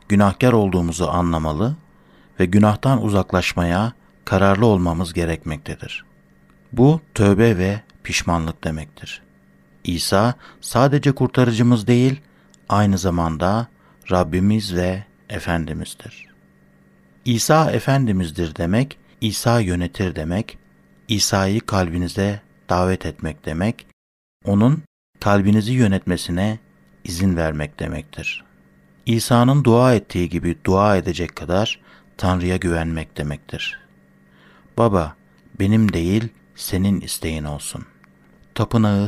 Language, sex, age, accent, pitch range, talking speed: Turkish, male, 60-79, native, 80-110 Hz, 90 wpm